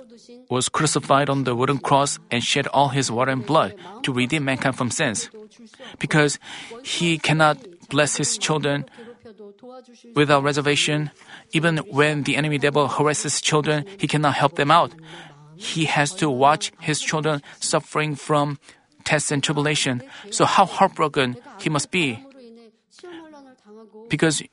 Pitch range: 150-195 Hz